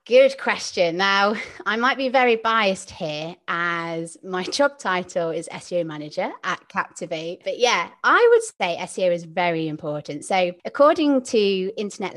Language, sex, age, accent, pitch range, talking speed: English, female, 20-39, British, 175-240 Hz, 155 wpm